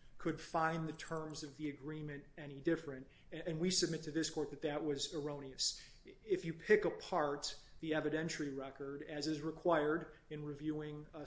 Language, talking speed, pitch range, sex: English, 170 wpm, 145-160 Hz, male